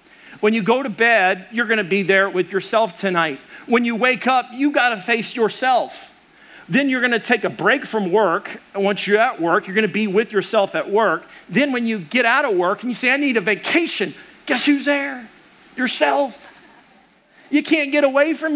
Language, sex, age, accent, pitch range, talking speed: English, male, 40-59, American, 190-250 Hz, 205 wpm